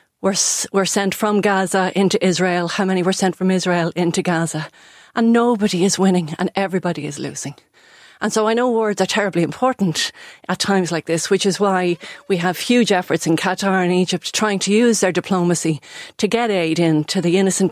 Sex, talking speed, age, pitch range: female, 195 wpm, 40-59, 180-220 Hz